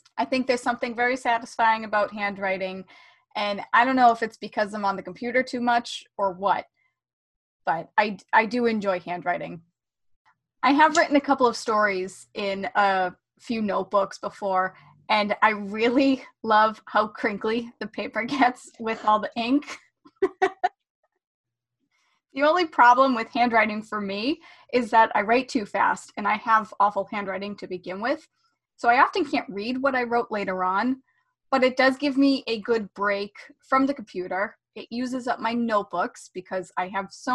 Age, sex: 20-39, female